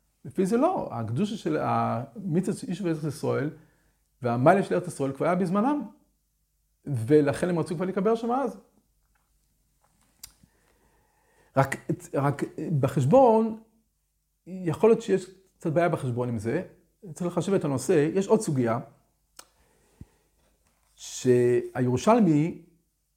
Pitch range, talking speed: 140-195 Hz, 95 wpm